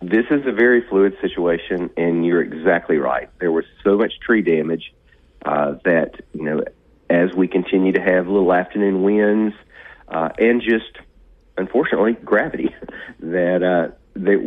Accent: American